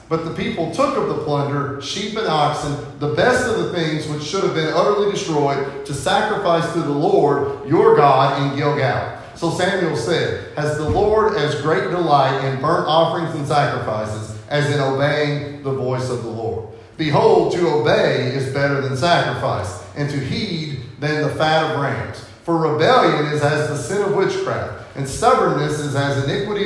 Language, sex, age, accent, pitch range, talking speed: English, male, 40-59, American, 120-165 Hz, 180 wpm